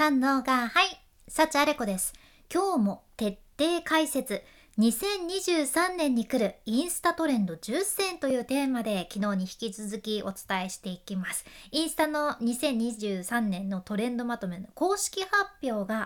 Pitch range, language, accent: 205-305 Hz, Japanese, native